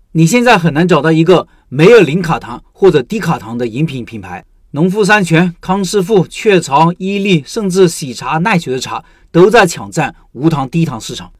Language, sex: Chinese, male